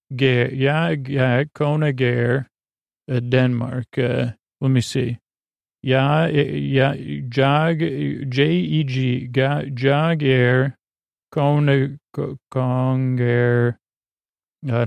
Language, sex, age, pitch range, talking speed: English, male, 40-59, 120-135 Hz, 70 wpm